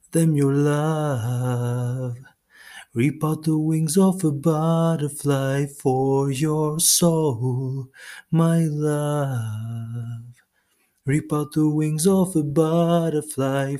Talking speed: 95 wpm